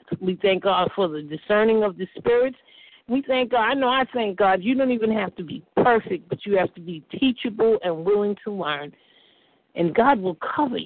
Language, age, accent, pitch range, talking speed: English, 50-69, American, 180-220 Hz, 210 wpm